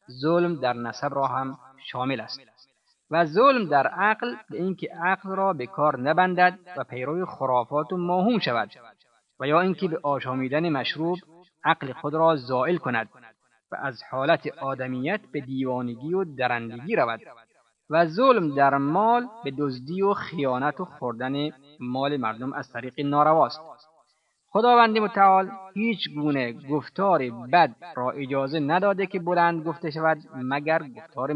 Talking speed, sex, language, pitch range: 145 wpm, male, Persian, 130-170 Hz